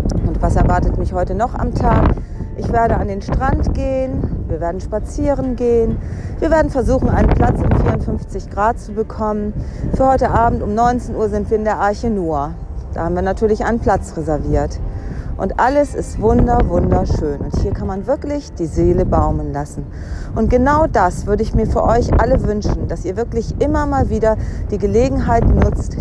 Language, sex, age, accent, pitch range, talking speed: German, female, 40-59, German, 185-265 Hz, 180 wpm